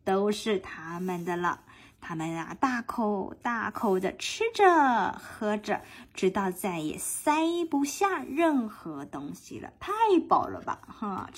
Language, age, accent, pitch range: Chinese, 20-39, native, 205-325 Hz